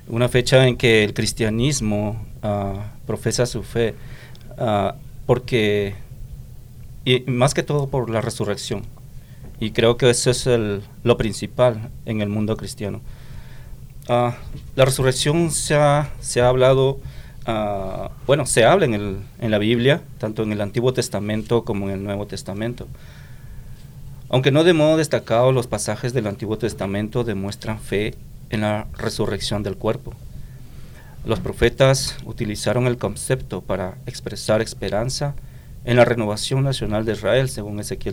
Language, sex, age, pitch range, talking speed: English, male, 40-59, 110-130 Hz, 130 wpm